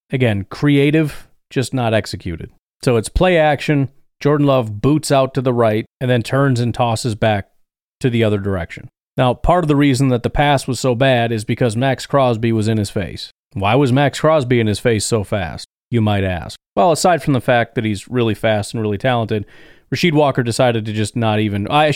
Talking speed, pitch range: 210 wpm, 105-130 Hz